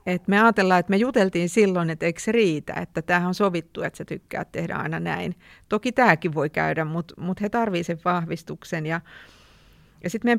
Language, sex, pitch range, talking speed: Finnish, female, 160-205 Hz, 200 wpm